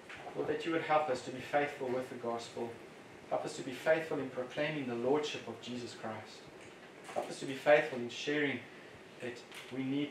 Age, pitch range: 30-49, 130-155 Hz